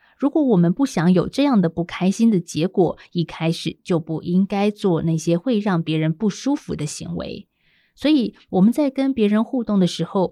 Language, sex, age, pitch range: Chinese, female, 20-39, 170-215 Hz